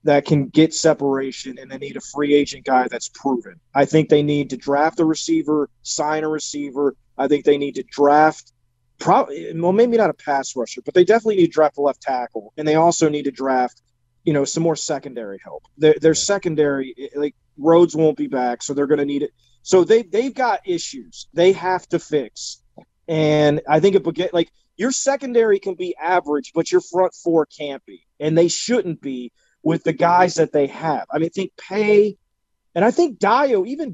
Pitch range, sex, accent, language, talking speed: 140-180 Hz, male, American, English, 210 wpm